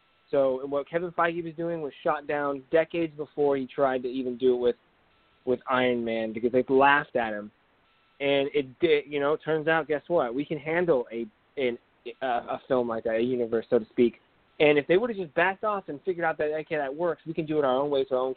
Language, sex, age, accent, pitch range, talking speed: English, male, 20-39, American, 125-160 Hz, 250 wpm